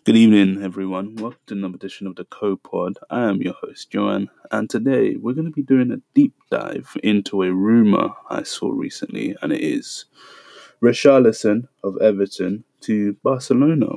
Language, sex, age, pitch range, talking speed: English, male, 20-39, 95-120 Hz, 170 wpm